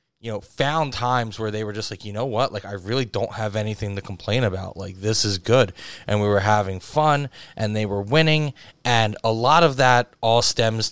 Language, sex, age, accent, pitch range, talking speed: English, male, 20-39, American, 105-125 Hz, 225 wpm